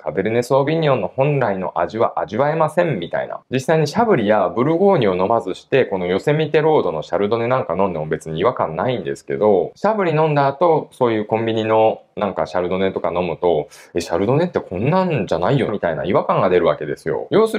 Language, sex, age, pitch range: Japanese, male, 20-39, 125-205 Hz